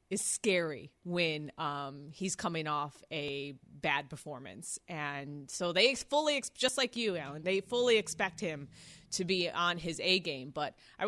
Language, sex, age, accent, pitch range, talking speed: English, female, 20-39, American, 165-220 Hz, 160 wpm